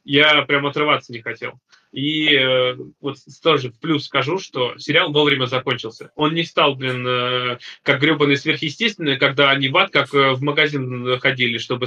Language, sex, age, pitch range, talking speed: Russian, male, 20-39, 130-150 Hz, 170 wpm